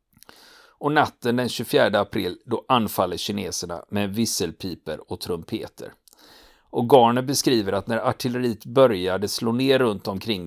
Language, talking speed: Swedish, 130 wpm